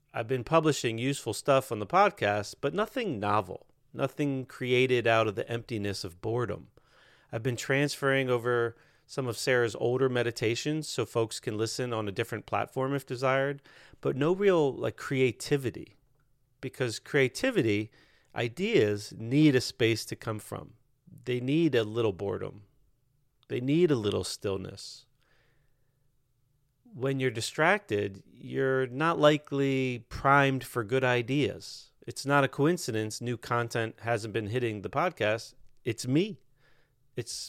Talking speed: 140 wpm